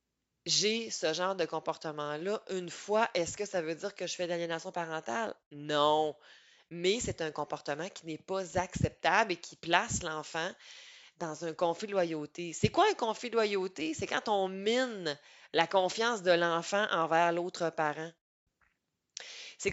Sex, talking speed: female, 170 wpm